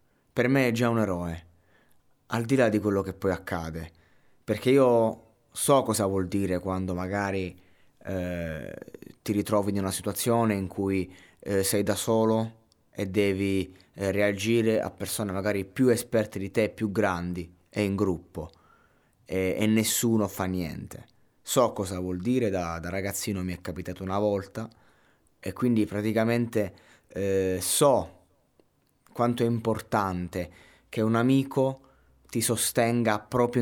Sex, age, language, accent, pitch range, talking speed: male, 20-39, Italian, native, 95-110 Hz, 145 wpm